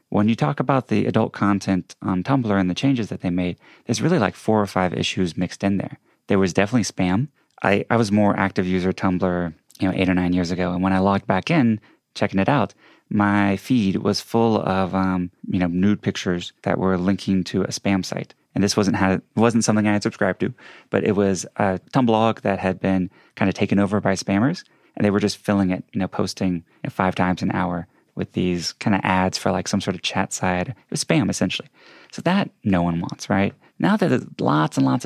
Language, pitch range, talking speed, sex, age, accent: English, 90-105 Hz, 230 wpm, male, 20-39, American